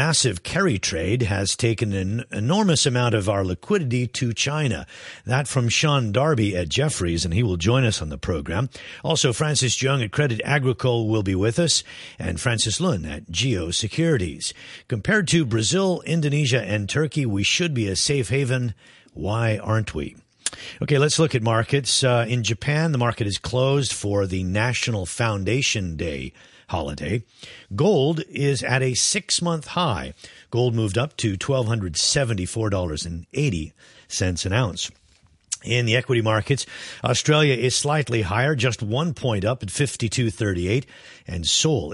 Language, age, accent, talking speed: English, 50-69, American, 165 wpm